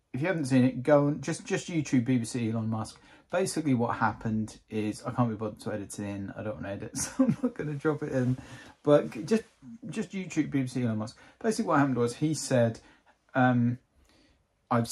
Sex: male